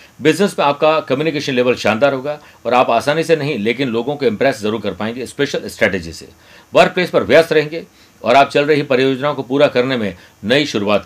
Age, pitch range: 50-69, 115-145 Hz